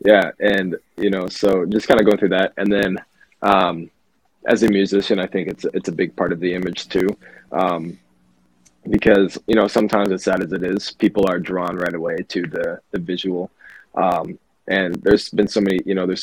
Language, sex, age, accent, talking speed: English, male, 20-39, American, 205 wpm